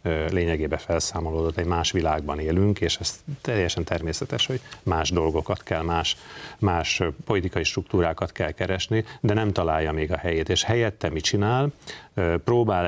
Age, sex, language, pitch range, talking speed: 40-59, male, Hungarian, 80-105 Hz, 145 wpm